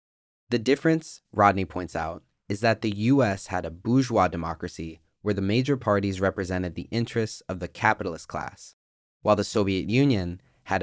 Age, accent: 20-39, American